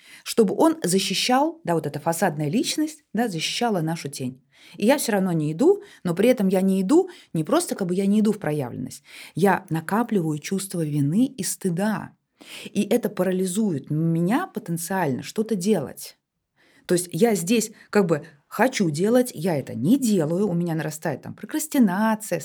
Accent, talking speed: native, 170 wpm